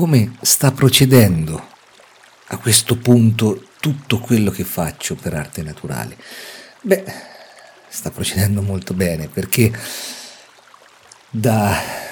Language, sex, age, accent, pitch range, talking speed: Italian, male, 50-69, native, 90-115 Hz, 100 wpm